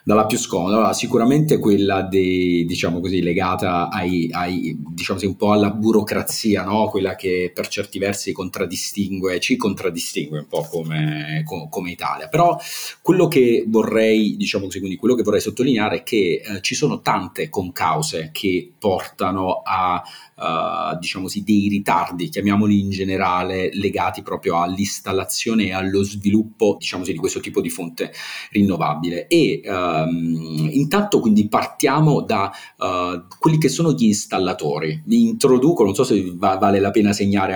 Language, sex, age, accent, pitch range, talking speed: Italian, male, 30-49, native, 90-110 Hz, 155 wpm